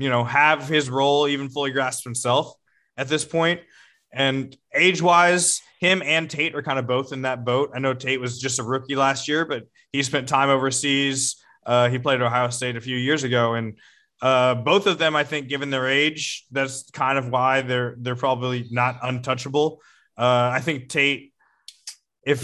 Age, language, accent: 20-39, English, American